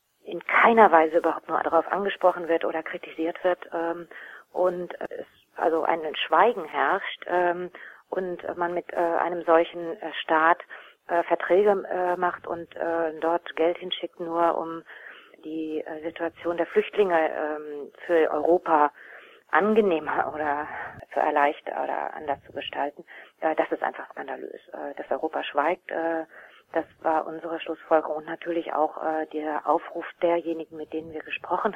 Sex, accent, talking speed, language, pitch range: female, German, 145 wpm, German, 155-180 Hz